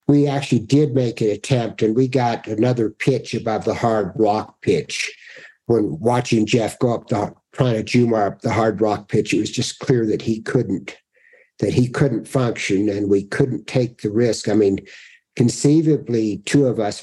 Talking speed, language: 185 wpm, English